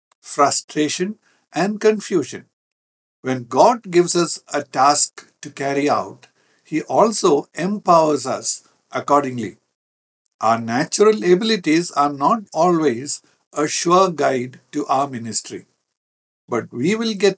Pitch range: 135-185 Hz